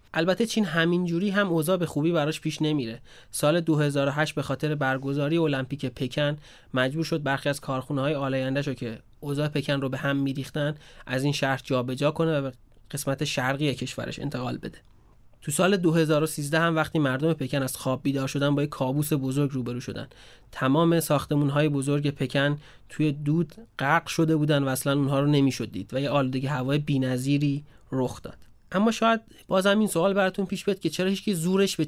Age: 30-49